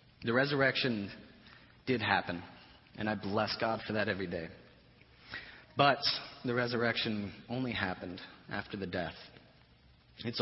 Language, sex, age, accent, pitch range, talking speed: English, male, 30-49, American, 95-120 Hz, 120 wpm